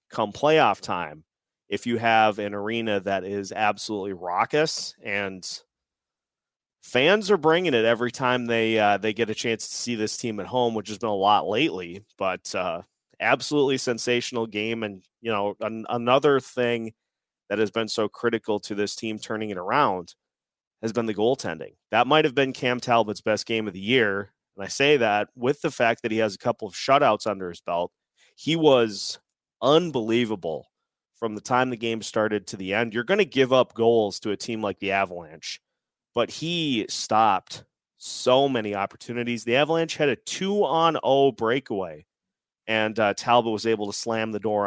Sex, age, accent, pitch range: male, 30-49, American, 105-125 Hz